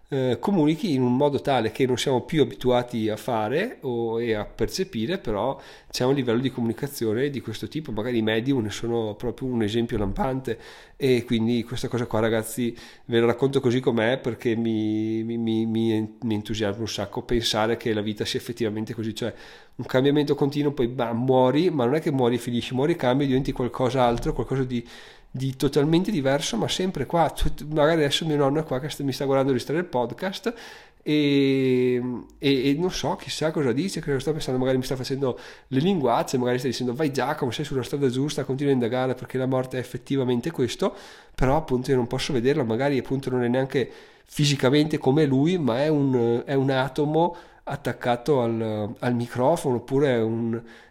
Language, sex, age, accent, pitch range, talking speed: Italian, male, 30-49, native, 115-140 Hz, 195 wpm